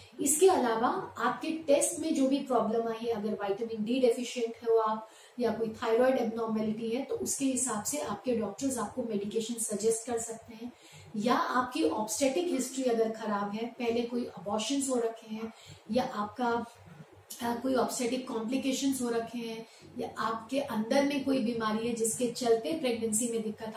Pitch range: 225-260 Hz